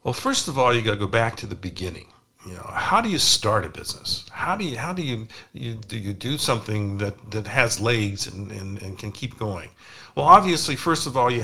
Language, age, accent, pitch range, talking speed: English, 50-69, American, 105-135 Hz, 240 wpm